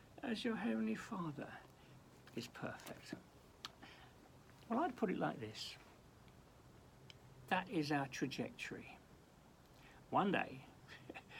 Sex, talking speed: male, 95 wpm